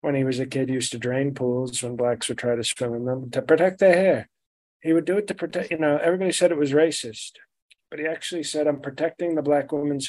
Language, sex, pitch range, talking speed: English, male, 125-150 Hz, 260 wpm